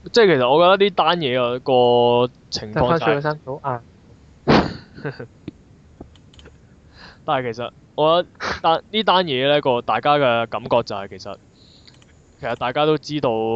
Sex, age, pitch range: male, 20-39, 100-135 Hz